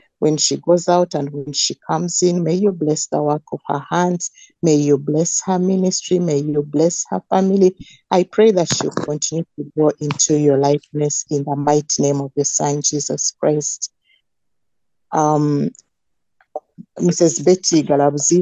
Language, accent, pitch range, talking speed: English, Nigerian, 145-170 Hz, 165 wpm